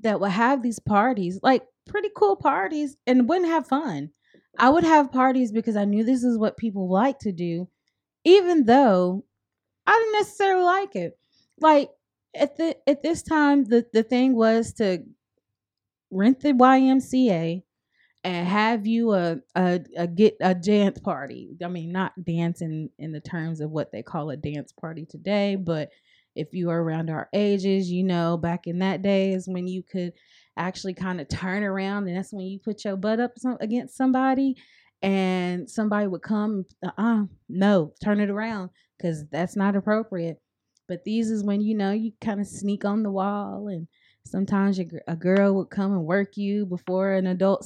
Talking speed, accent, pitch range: 185 wpm, American, 180-245 Hz